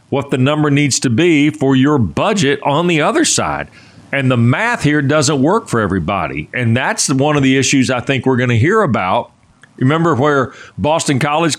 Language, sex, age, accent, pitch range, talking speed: English, male, 40-59, American, 125-165 Hz, 195 wpm